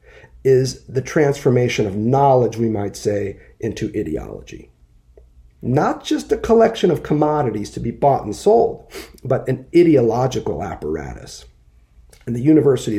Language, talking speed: English, 130 wpm